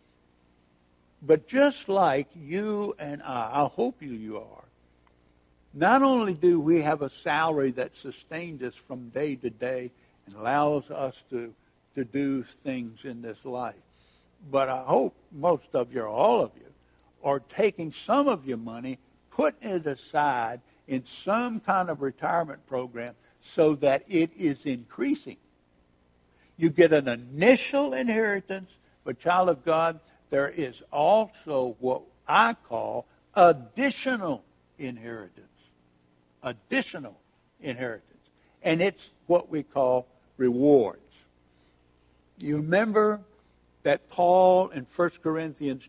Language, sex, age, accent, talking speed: English, male, 60-79, American, 125 wpm